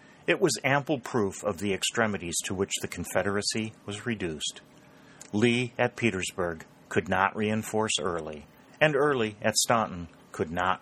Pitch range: 95-125 Hz